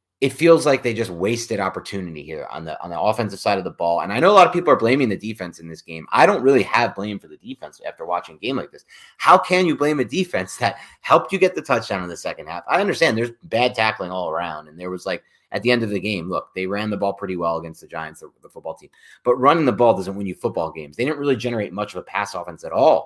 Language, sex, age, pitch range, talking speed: English, male, 30-49, 90-125 Hz, 290 wpm